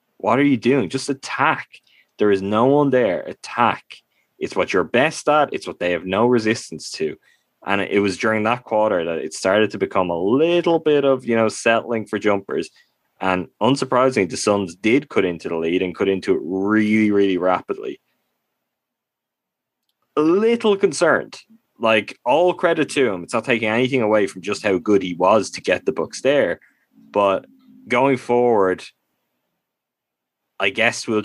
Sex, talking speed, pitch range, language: male, 175 wpm, 95-130 Hz, English